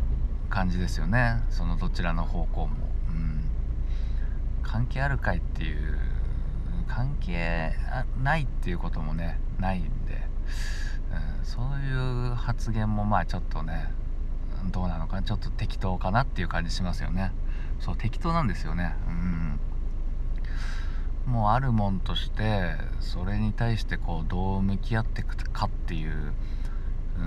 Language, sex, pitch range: Japanese, male, 80-110 Hz